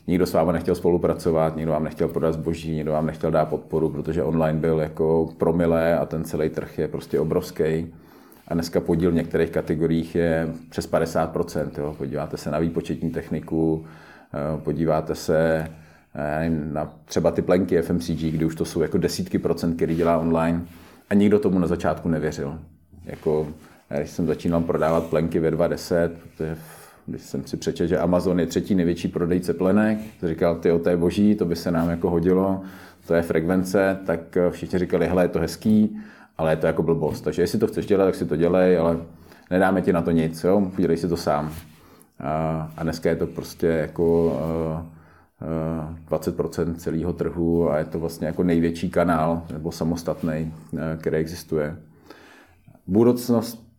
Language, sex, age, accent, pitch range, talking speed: Czech, male, 40-59, native, 80-90 Hz, 170 wpm